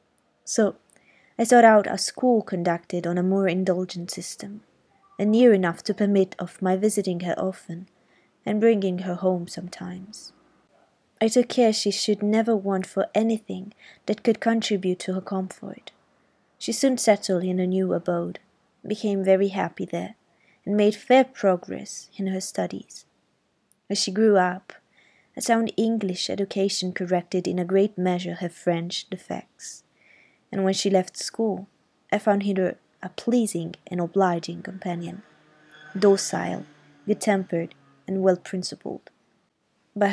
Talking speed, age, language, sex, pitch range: 140 wpm, 20-39, Italian, female, 180-210 Hz